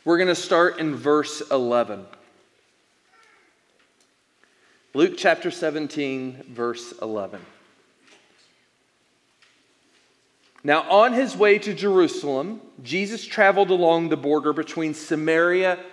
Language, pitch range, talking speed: English, 150-255 Hz, 95 wpm